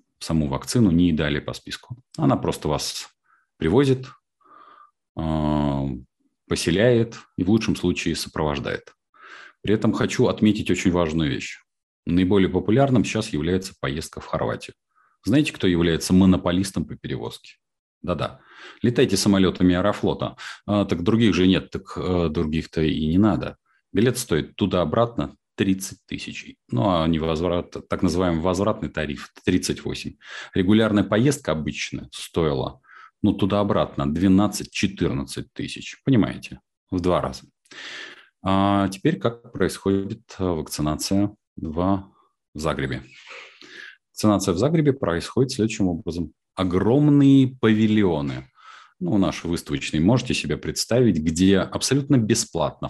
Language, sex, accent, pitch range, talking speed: Russian, male, native, 80-110 Hz, 110 wpm